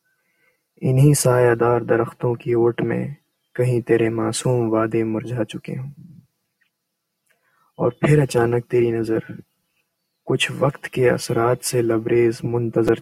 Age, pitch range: 20-39, 120-165 Hz